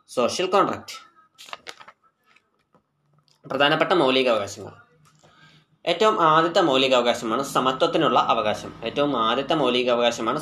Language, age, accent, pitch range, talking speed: Malayalam, 20-39, native, 125-170 Hz, 75 wpm